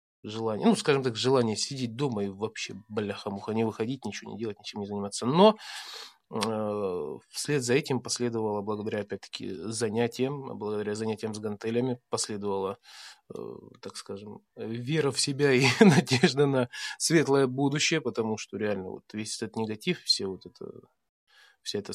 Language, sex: Russian, male